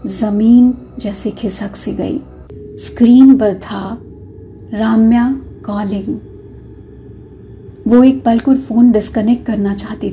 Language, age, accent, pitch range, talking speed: Hindi, 30-49, native, 205-240 Hz, 100 wpm